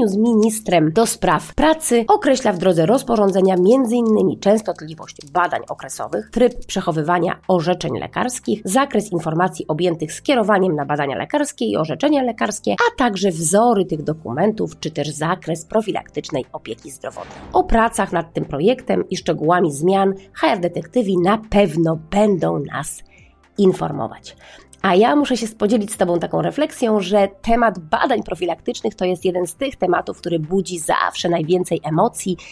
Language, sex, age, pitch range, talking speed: Polish, female, 30-49, 165-225 Hz, 140 wpm